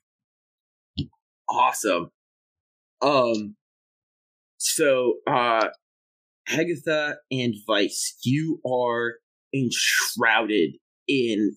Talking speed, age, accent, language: 55 wpm, 20-39, American, English